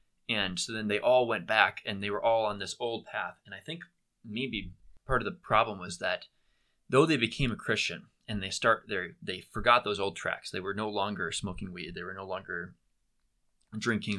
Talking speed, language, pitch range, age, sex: 210 wpm, English, 95-115 Hz, 20-39, male